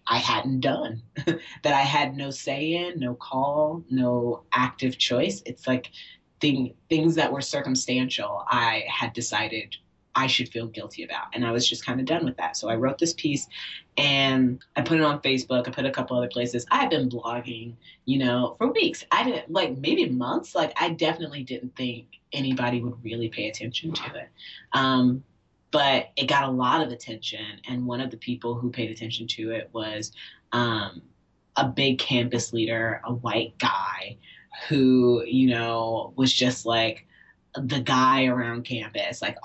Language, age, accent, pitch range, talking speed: English, 30-49, American, 115-140 Hz, 180 wpm